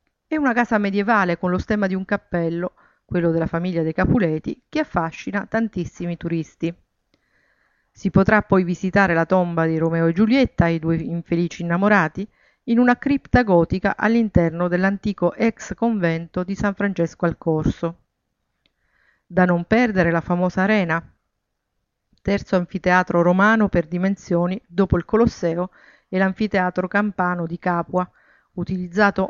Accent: native